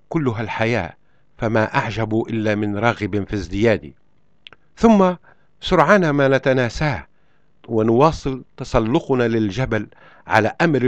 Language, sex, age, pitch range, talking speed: Arabic, male, 50-69, 110-145 Hz, 100 wpm